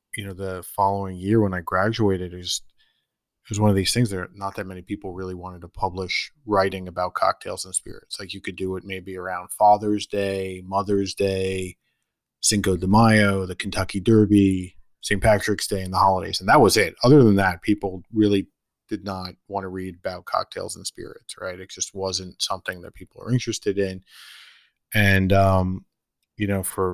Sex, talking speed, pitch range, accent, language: male, 190 wpm, 90-100 Hz, American, English